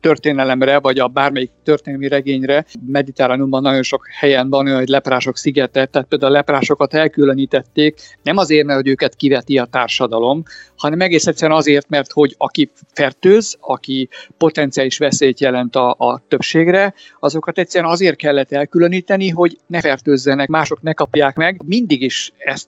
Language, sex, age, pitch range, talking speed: Hungarian, male, 50-69, 140-165 Hz, 150 wpm